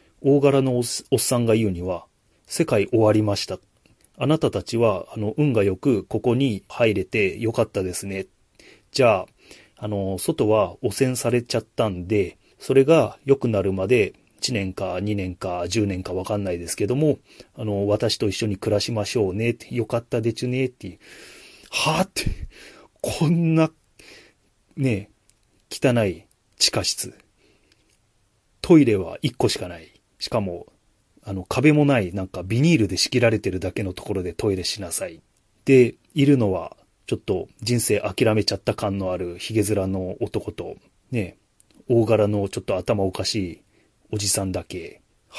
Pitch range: 95-125 Hz